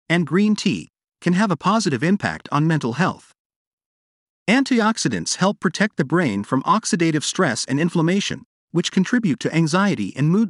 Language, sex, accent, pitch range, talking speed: English, male, American, 150-210 Hz, 155 wpm